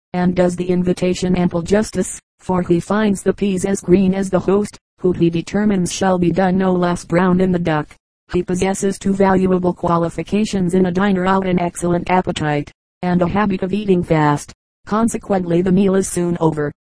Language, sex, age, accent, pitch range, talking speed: English, female, 30-49, American, 175-190 Hz, 185 wpm